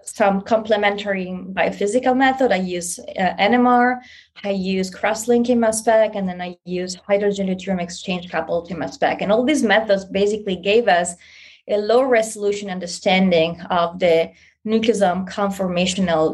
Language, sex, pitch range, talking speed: English, female, 185-225 Hz, 140 wpm